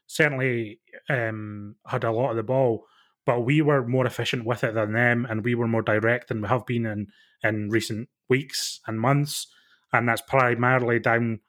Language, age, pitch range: English, 20-39, 110-130 Hz